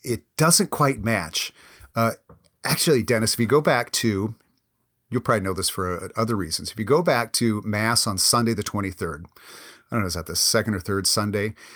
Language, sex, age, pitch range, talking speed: English, male, 40-59, 105-130 Hz, 205 wpm